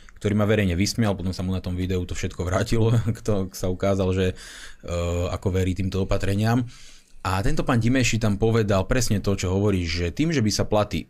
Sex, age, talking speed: male, 30-49, 200 wpm